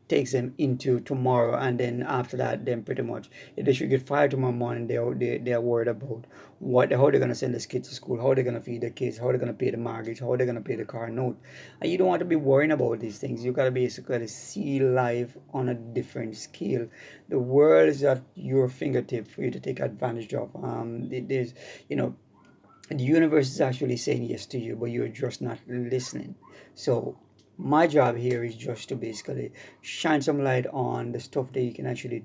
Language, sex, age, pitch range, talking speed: English, male, 30-49, 120-130 Hz, 230 wpm